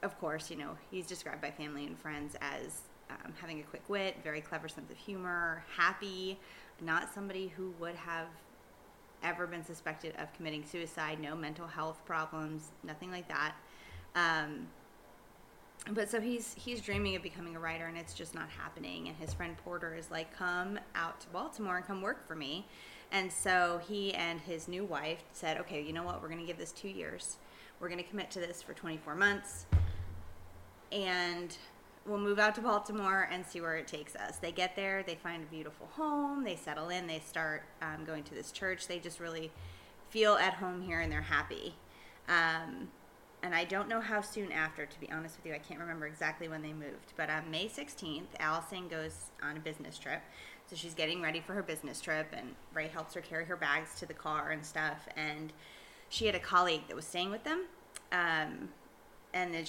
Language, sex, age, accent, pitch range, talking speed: English, female, 20-39, American, 155-185 Hz, 200 wpm